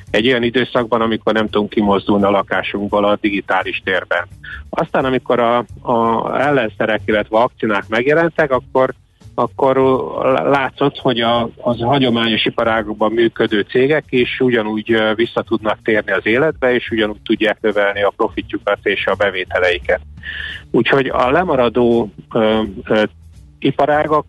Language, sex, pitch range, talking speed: Hungarian, male, 105-125 Hz, 125 wpm